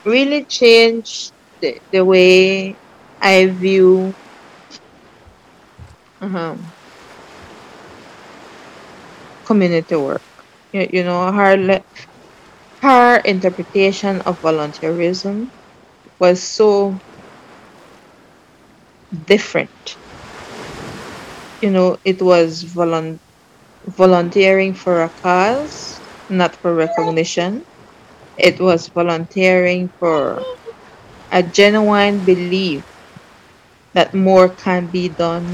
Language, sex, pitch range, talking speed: English, female, 175-200 Hz, 75 wpm